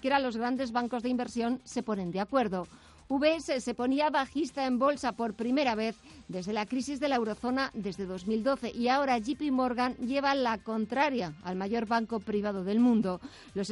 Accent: Spanish